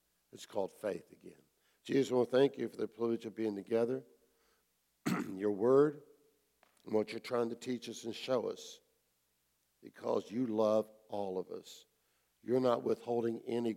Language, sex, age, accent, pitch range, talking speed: English, male, 60-79, American, 95-120 Hz, 165 wpm